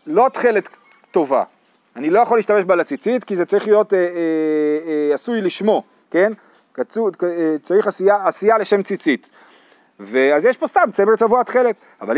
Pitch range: 180-245 Hz